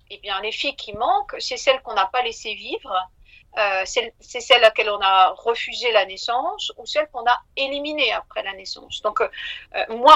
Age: 50-69